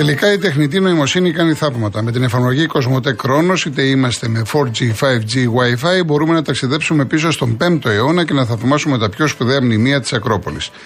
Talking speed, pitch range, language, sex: 180 wpm, 115-155 Hz, Greek, male